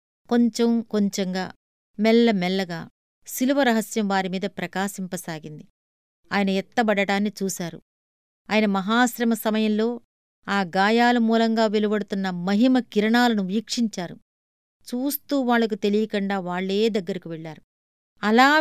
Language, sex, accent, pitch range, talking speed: Telugu, female, native, 185-230 Hz, 85 wpm